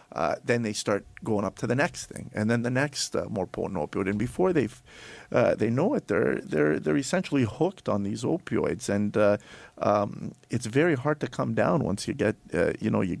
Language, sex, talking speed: English, male, 225 wpm